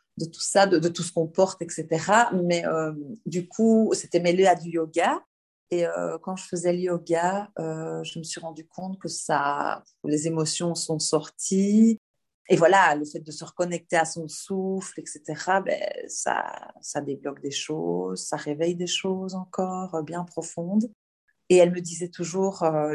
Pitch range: 155-185 Hz